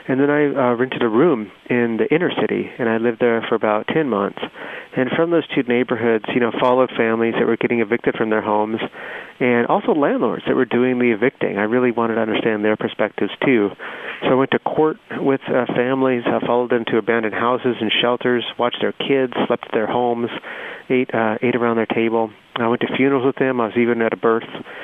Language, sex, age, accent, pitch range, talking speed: English, male, 30-49, American, 115-140 Hz, 215 wpm